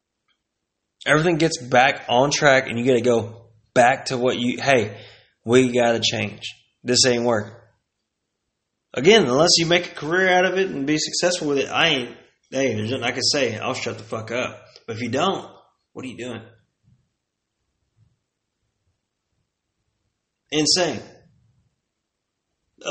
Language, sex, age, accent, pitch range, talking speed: English, male, 20-39, American, 120-145 Hz, 150 wpm